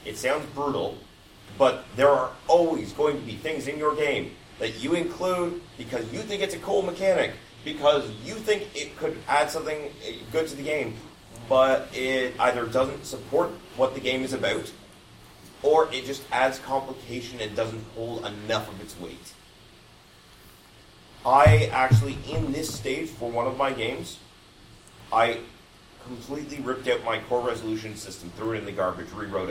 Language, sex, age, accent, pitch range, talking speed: English, male, 30-49, American, 110-140 Hz, 165 wpm